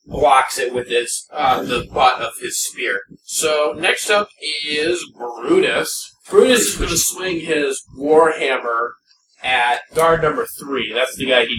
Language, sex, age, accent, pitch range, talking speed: English, male, 30-49, American, 145-205 Hz, 155 wpm